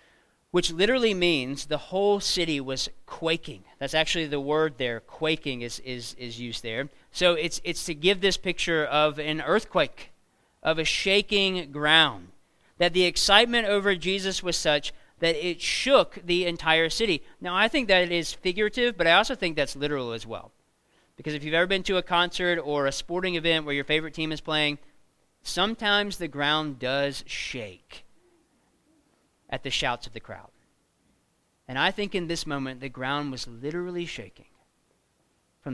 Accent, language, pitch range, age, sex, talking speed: American, English, 140-180 Hz, 40-59, male, 170 wpm